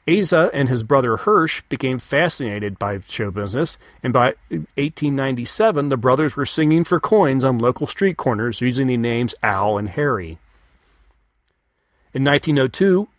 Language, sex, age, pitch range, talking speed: English, male, 40-59, 115-155 Hz, 140 wpm